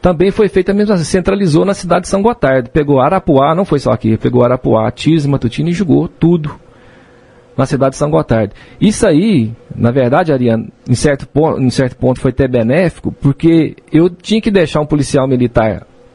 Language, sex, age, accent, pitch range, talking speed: Portuguese, male, 40-59, Brazilian, 125-180 Hz, 195 wpm